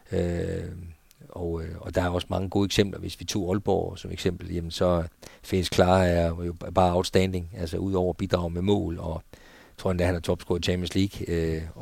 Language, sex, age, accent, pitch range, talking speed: Danish, male, 50-69, native, 90-100 Hz, 215 wpm